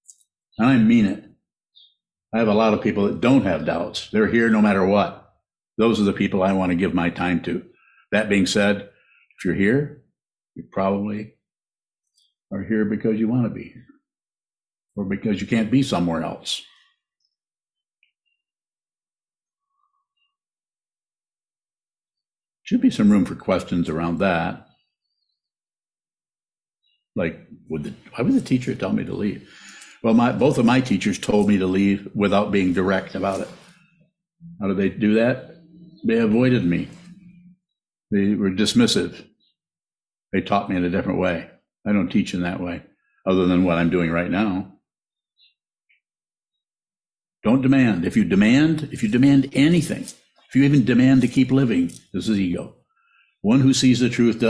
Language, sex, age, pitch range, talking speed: English, male, 60-79, 100-145 Hz, 155 wpm